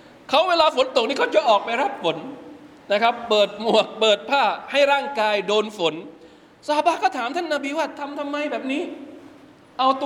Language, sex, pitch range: Thai, male, 215-300 Hz